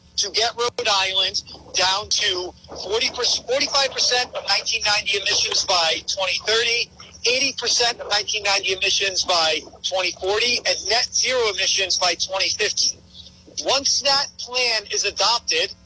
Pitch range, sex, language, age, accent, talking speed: 190-275 Hz, male, English, 40-59, American, 115 wpm